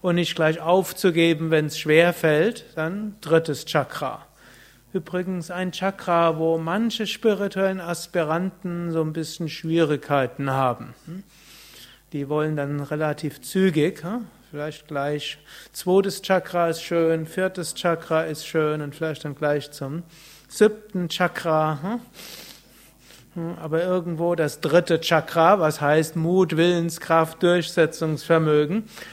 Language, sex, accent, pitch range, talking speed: German, male, German, 155-180 Hz, 115 wpm